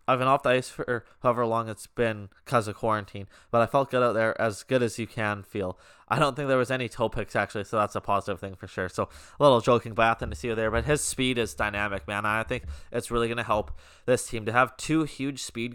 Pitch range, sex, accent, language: 105-125 Hz, male, American, English